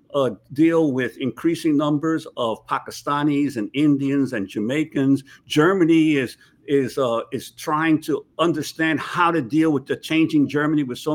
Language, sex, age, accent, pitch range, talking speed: English, male, 60-79, American, 140-170 Hz, 150 wpm